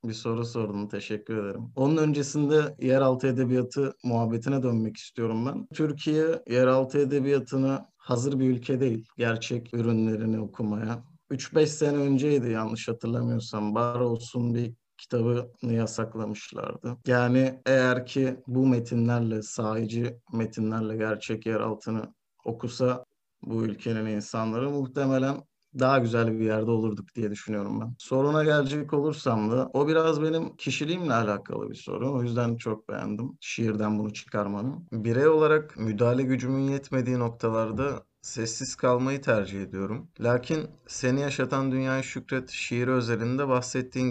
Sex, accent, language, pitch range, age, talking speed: male, native, Turkish, 115-135 Hz, 50-69, 125 wpm